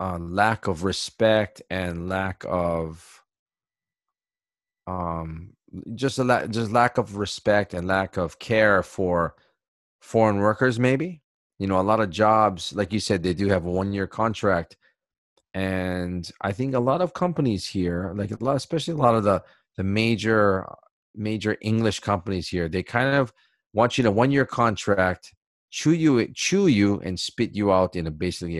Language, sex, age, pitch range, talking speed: English, male, 30-49, 90-110 Hz, 170 wpm